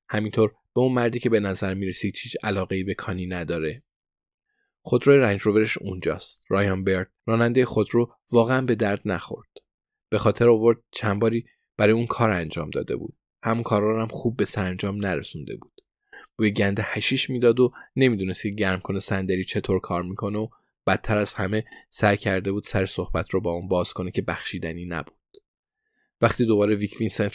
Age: 20-39